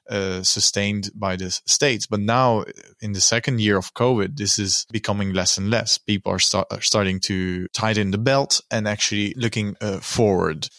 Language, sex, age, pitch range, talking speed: English, male, 20-39, 95-110 Hz, 185 wpm